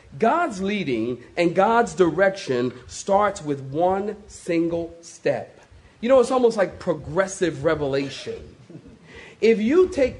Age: 40-59